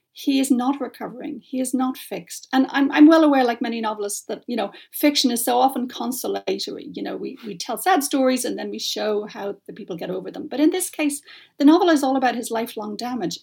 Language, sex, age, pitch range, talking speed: English, female, 40-59, 225-280 Hz, 235 wpm